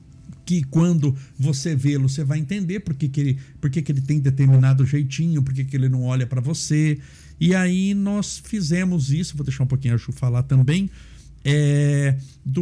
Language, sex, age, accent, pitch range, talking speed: Portuguese, male, 60-79, Brazilian, 130-175 Hz, 190 wpm